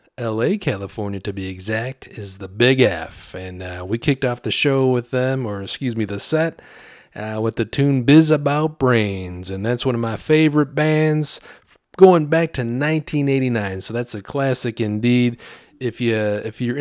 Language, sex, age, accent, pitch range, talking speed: English, male, 30-49, American, 105-145 Hz, 180 wpm